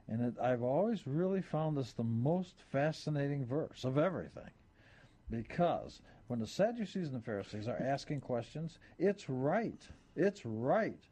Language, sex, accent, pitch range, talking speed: English, male, American, 120-175 Hz, 145 wpm